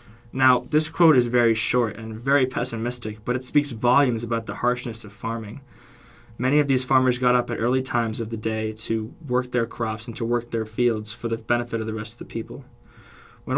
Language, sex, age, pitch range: English, male, 20-39, 115-130 Hz